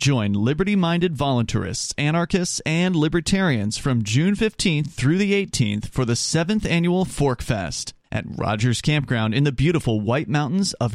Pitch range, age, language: 120-170 Hz, 30-49, English